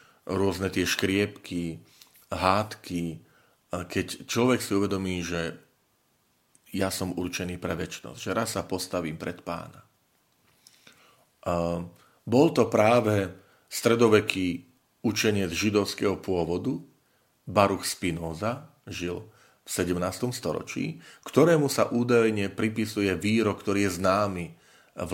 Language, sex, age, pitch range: Slovak, male, 40-59, 90-115 Hz